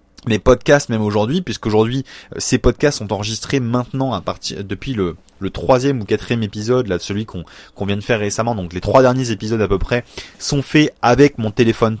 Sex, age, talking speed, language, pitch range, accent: male, 20-39, 200 wpm, French, 115-140 Hz, French